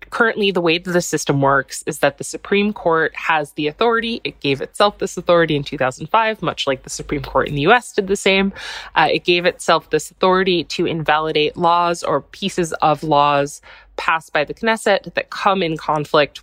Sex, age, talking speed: female, 20-39, 195 wpm